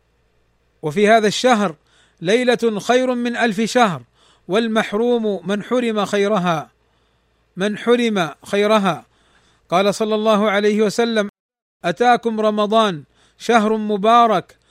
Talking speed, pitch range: 100 wpm, 195-225 Hz